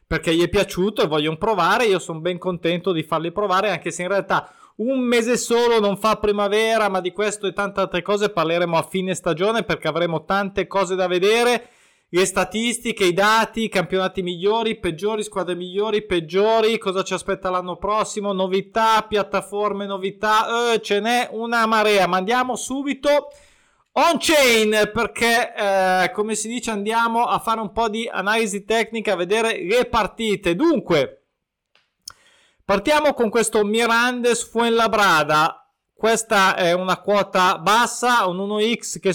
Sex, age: male, 20-39